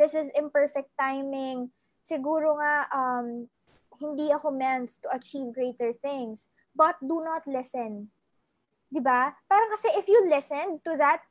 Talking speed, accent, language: 140 wpm, Filipino, English